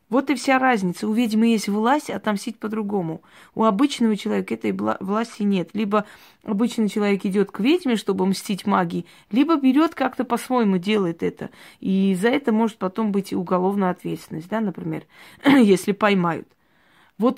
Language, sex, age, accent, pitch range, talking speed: Russian, female, 20-39, native, 185-225 Hz, 160 wpm